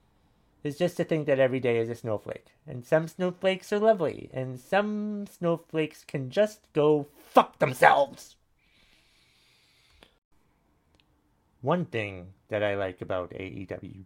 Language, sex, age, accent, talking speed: English, male, 30-49, American, 130 wpm